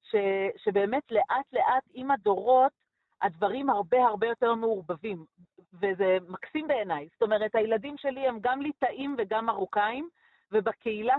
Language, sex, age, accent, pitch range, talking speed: Hebrew, female, 40-59, native, 210-265 Hz, 130 wpm